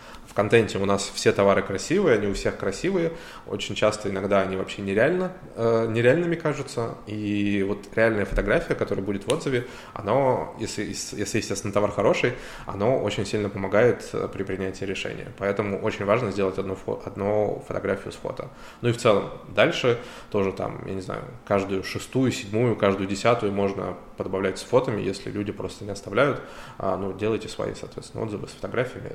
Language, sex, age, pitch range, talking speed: Russian, male, 20-39, 95-115 Hz, 170 wpm